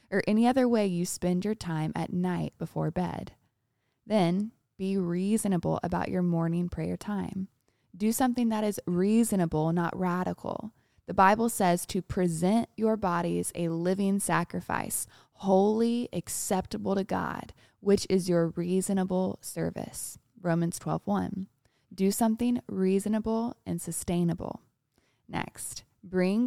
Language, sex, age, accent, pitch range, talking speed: English, female, 20-39, American, 175-215 Hz, 125 wpm